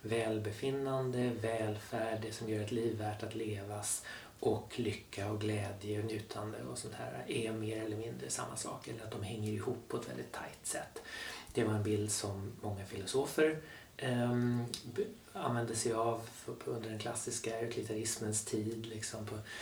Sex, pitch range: male, 105-120 Hz